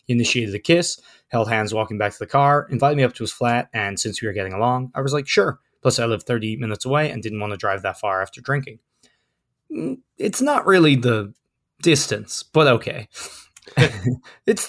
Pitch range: 115-140 Hz